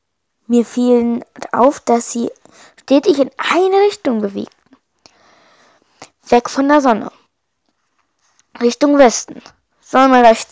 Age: 20-39